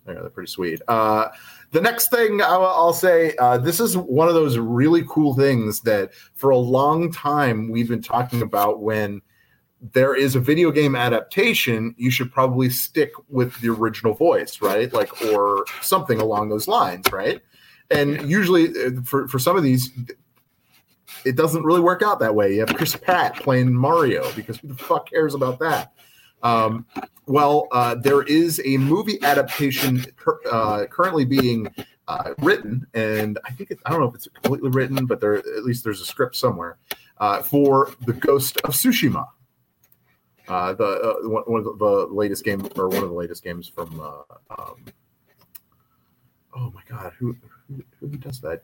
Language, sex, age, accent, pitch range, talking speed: English, male, 30-49, American, 115-150 Hz, 175 wpm